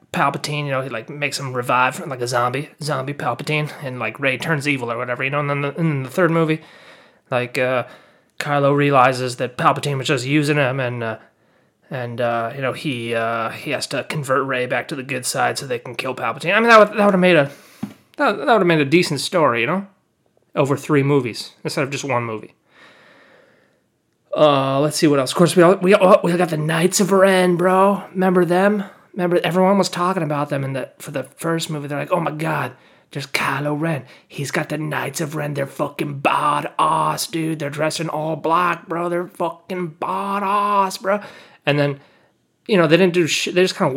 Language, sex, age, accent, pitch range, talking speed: English, male, 30-49, American, 140-180 Hz, 215 wpm